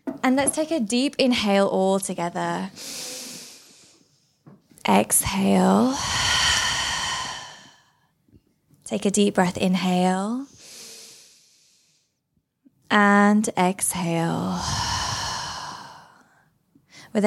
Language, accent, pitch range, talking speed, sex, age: English, British, 185-240 Hz, 60 wpm, female, 10-29